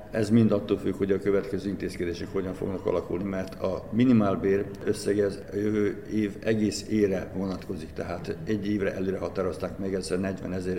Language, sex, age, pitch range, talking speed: Hungarian, male, 60-79, 95-105 Hz, 150 wpm